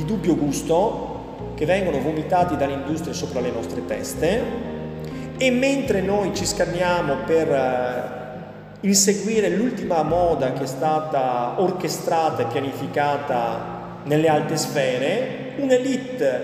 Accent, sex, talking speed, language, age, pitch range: native, male, 110 wpm, Italian, 40-59, 145-195 Hz